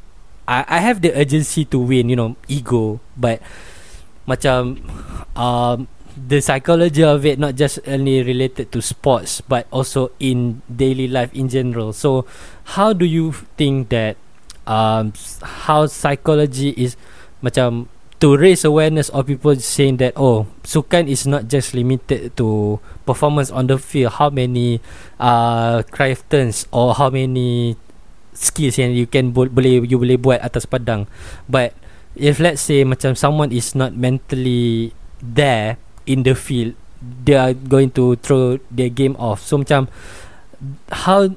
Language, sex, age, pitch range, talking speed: Malay, male, 20-39, 115-140 Hz, 150 wpm